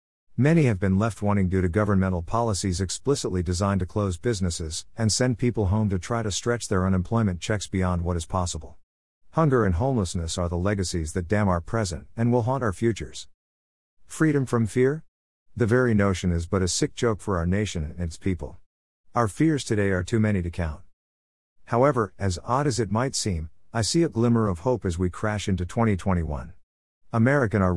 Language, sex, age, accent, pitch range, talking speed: English, male, 50-69, American, 85-115 Hz, 190 wpm